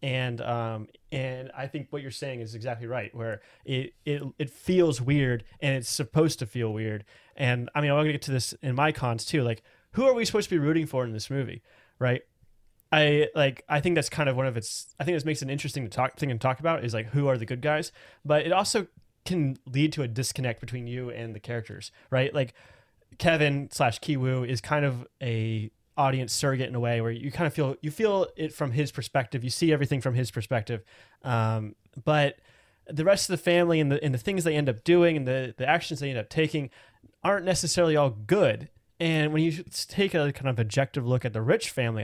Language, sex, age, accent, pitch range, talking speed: English, male, 20-39, American, 120-155 Hz, 235 wpm